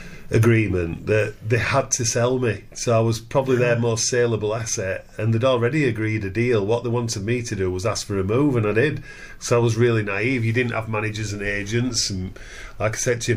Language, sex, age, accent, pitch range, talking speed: English, male, 40-59, British, 100-120 Hz, 235 wpm